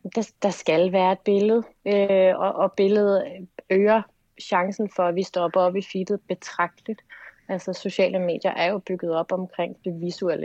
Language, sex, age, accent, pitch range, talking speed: Danish, female, 30-49, native, 160-190 Hz, 155 wpm